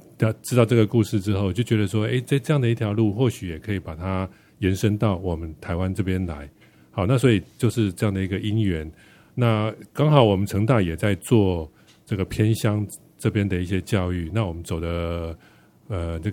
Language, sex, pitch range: Chinese, male, 90-110 Hz